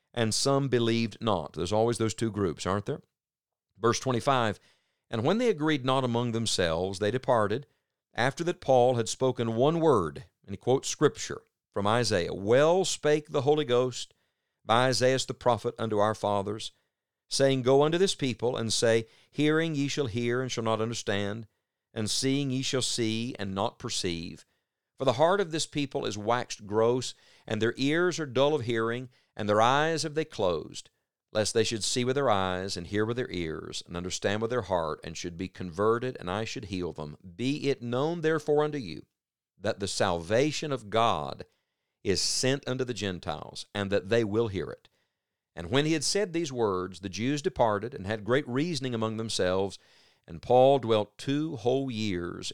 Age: 50-69